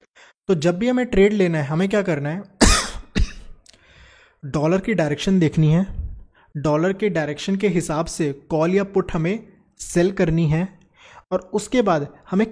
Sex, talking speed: male, 160 wpm